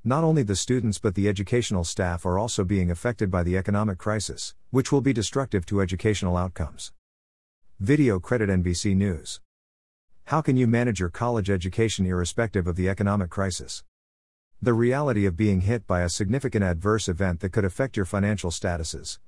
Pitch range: 85-115 Hz